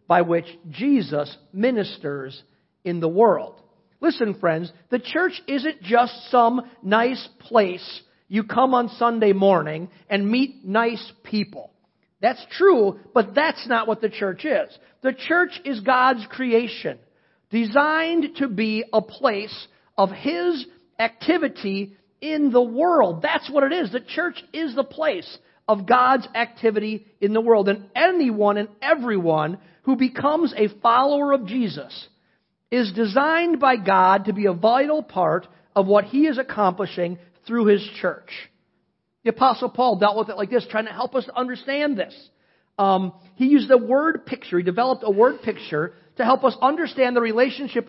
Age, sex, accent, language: 50-69, male, American, English